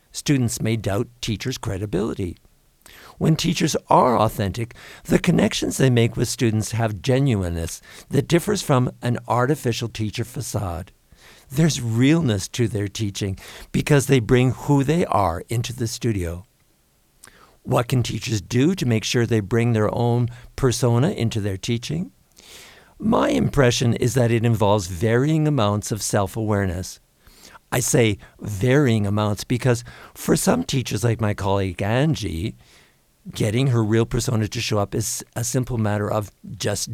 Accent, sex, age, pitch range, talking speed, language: American, male, 60-79, 105-130 Hz, 145 wpm, English